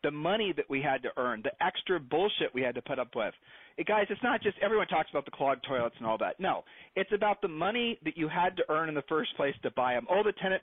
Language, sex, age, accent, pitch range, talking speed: English, male, 40-59, American, 150-190 Hz, 280 wpm